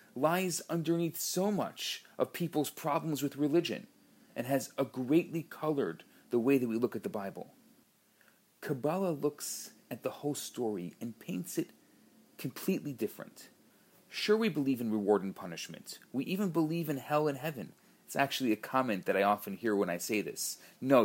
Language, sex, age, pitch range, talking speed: English, male, 30-49, 130-185 Hz, 170 wpm